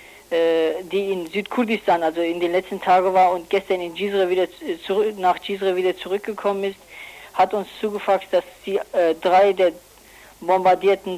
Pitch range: 185-205 Hz